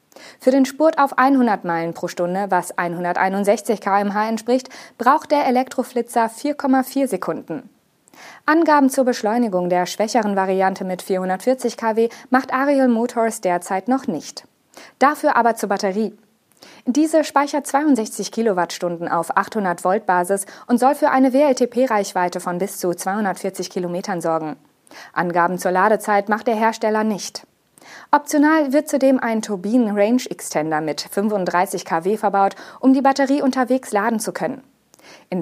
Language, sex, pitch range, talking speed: German, female, 185-255 Hz, 135 wpm